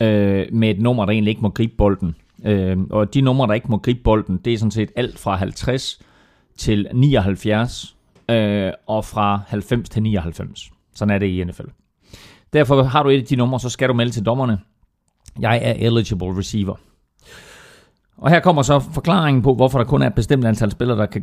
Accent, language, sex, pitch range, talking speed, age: native, Danish, male, 105-150 Hz, 190 wpm, 30-49